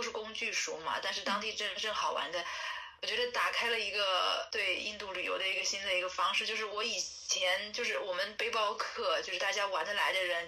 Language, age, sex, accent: Chinese, 20-39, female, native